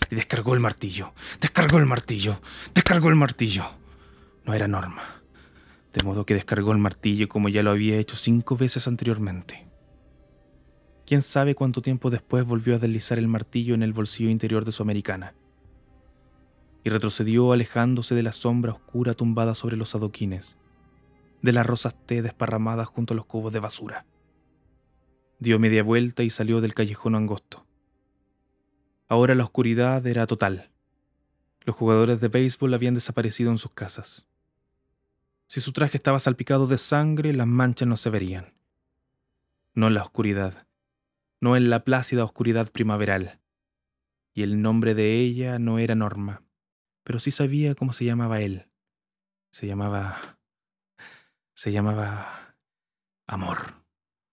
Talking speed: 145 wpm